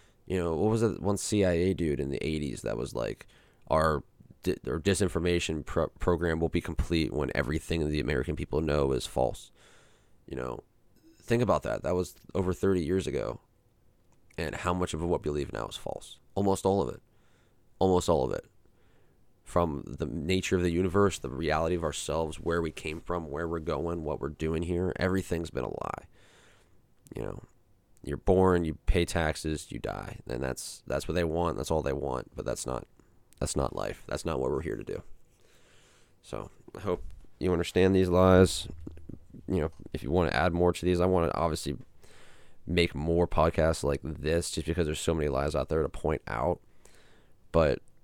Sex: male